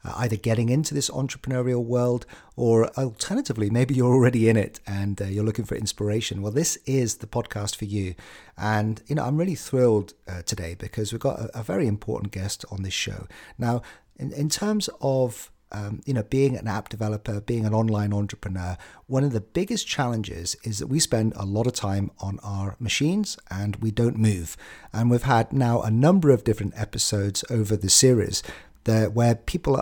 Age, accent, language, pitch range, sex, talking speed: 40-59, British, English, 105-125 Hz, male, 190 wpm